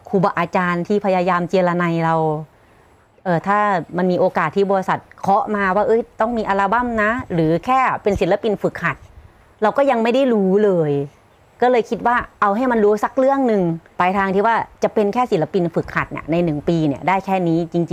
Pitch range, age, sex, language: 165-205 Hz, 30-49, female, Thai